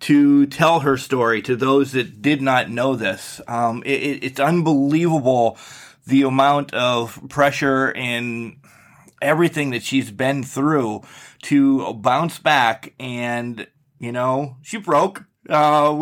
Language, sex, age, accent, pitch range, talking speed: English, male, 30-49, American, 130-150 Hz, 125 wpm